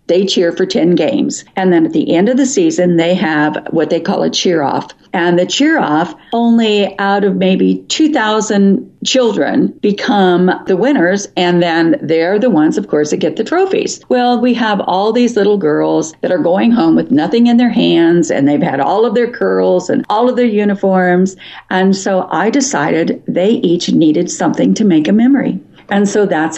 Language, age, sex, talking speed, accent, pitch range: English, 50-69, female, 195 wpm, American, 175-235 Hz